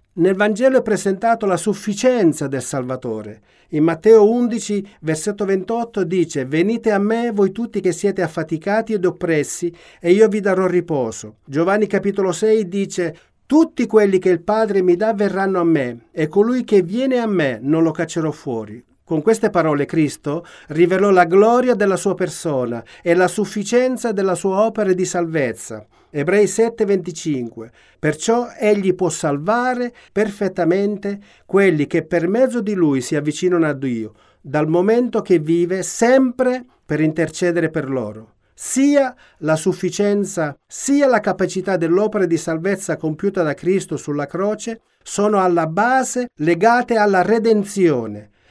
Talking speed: 145 wpm